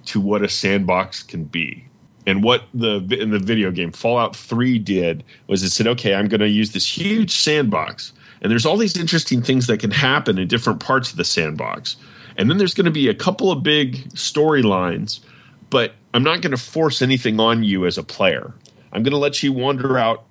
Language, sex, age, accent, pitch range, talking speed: English, male, 30-49, American, 105-145 Hz, 215 wpm